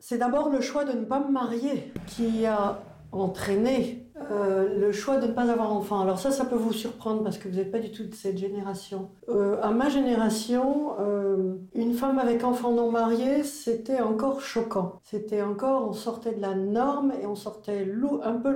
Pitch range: 195-245 Hz